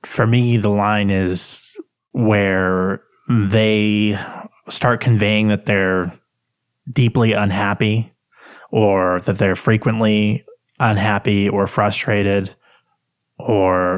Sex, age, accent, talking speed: male, 20-39, American, 90 wpm